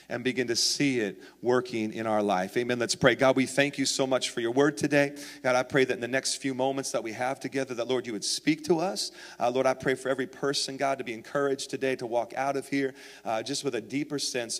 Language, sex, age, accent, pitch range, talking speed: English, male, 40-59, American, 135-195 Hz, 265 wpm